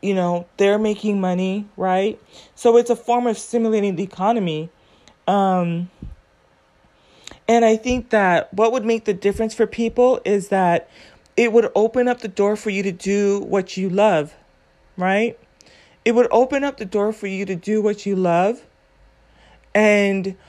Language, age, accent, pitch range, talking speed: English, 30-49, American, 170-225 Hz, 165 wpm